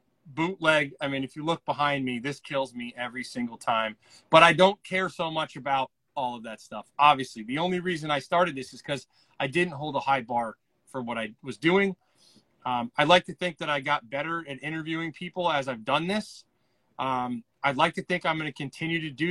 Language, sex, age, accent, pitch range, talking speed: English, male, 30-49, American, 130-170 Hz, 225 wpm